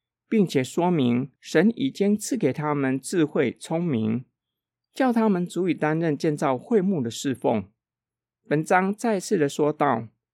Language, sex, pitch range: Chinese, male, 125-205 Hz